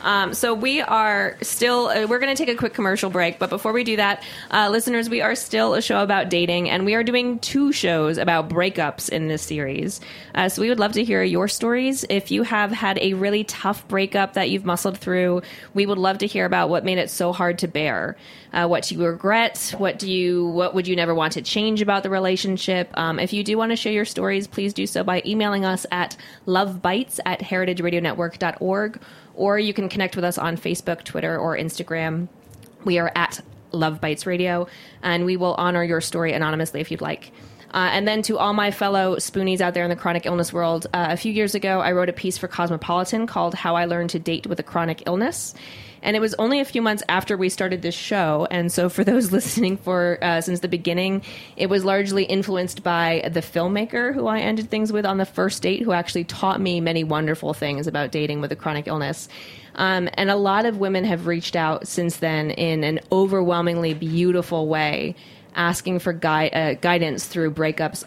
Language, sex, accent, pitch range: English, female, American, 170-200 Hz